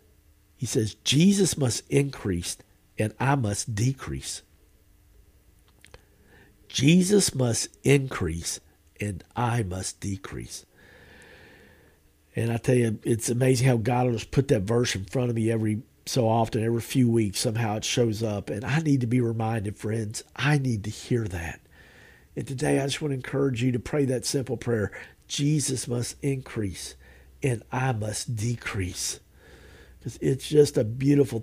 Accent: American